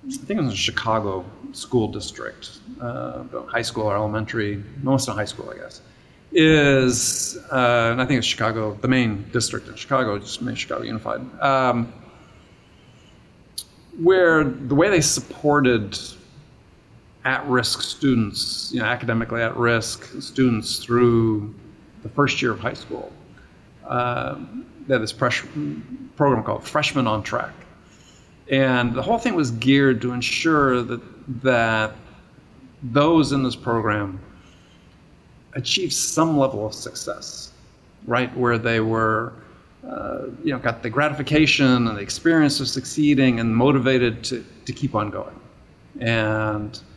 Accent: American